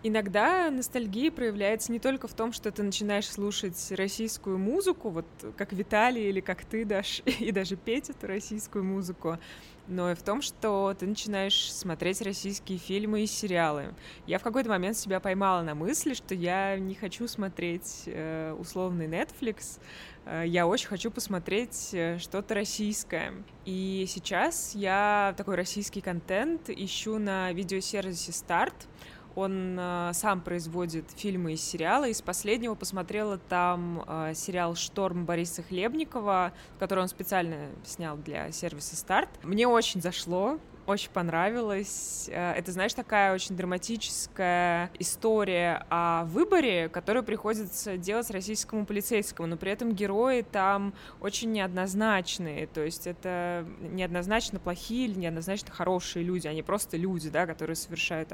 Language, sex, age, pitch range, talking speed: Russian, female, 20-39, 175-210 Hz, 135 wpm